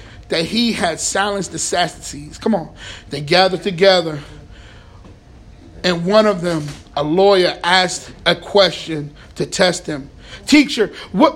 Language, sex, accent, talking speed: English, male, American, 130 wpm